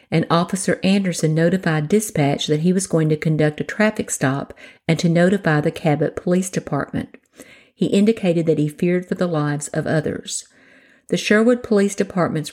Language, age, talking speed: English, 50-69, 170 wpm